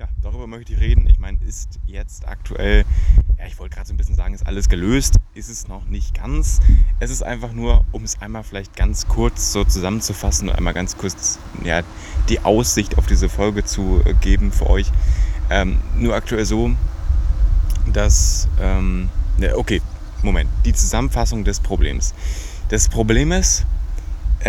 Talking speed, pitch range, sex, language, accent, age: 160 wpm, 80-110 Hz, male, German, German, 30-49